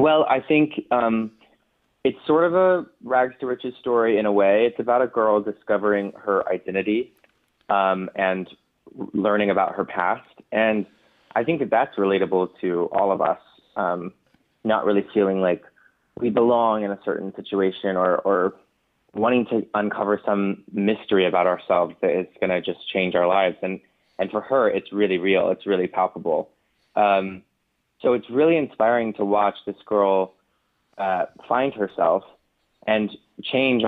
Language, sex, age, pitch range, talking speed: English, male, 20-39, 95-115 Hz, 160 wpm